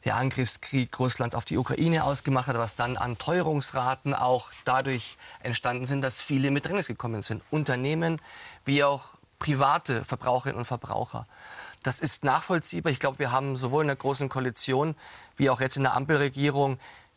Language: German